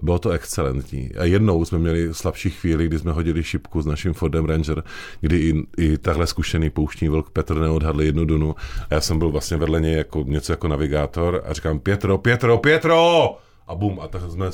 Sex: male